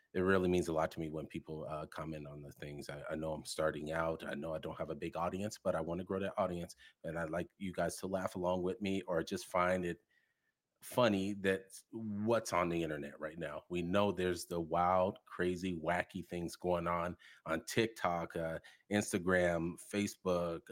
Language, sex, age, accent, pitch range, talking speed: English, male, 30-49, American, 85-105 Hz, 210 wpm